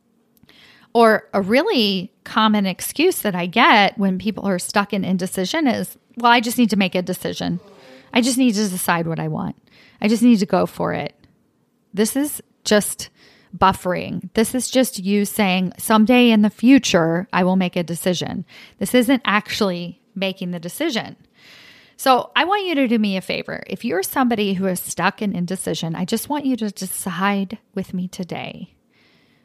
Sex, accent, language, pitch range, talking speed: female, American, English, 185-240 Hz, 180 wpm